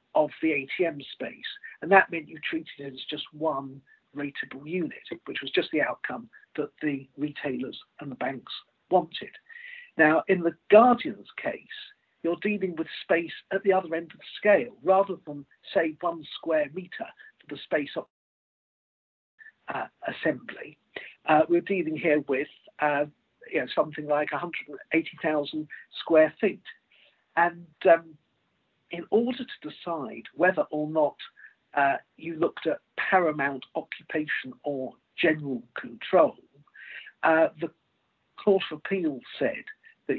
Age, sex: 50-69, male